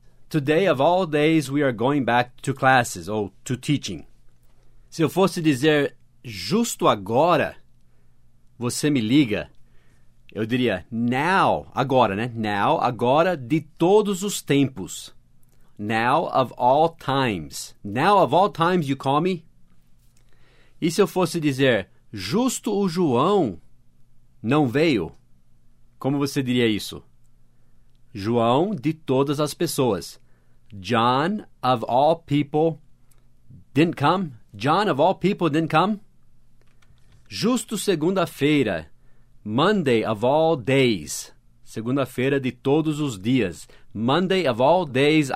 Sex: male